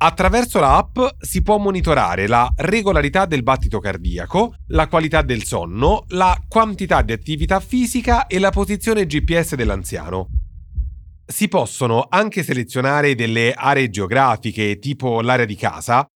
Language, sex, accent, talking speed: Italian, male, native, 130 wpm